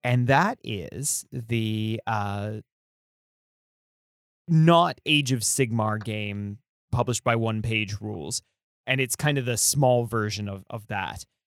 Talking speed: 130 wpm